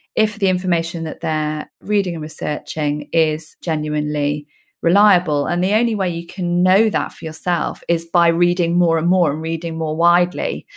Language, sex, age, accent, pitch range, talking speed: English, female, 30-49, British, 160-185 Hz, 175 wpm